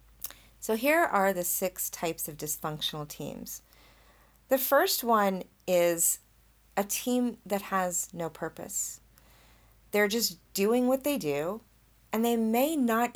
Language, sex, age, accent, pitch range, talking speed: English, female, 30-49, American, 150-200 Hz, 130 wpm